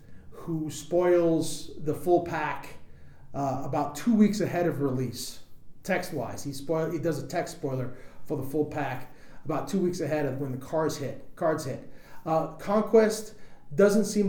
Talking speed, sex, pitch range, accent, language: 165 wpm, male, 145-185 Hz, American, English